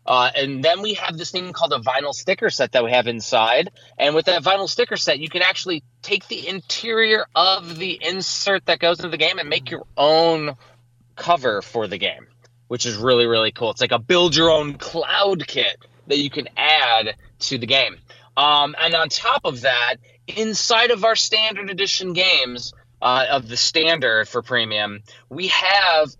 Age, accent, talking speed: 20-39, American, 185 wpm